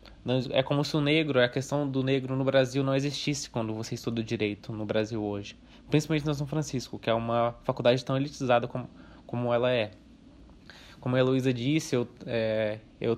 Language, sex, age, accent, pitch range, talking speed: Portuguese, male, 20-39, Brazilian, 120-145 Hz, 185 wpm